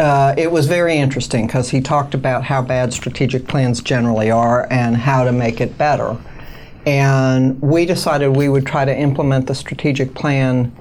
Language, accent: English, American